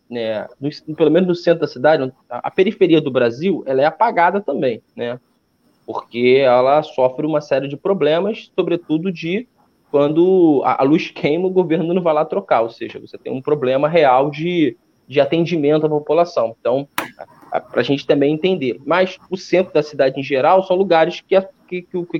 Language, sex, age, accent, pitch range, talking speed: Portuguese, male, 20-39, Brazilian, 145-190 Hz, 175 wpm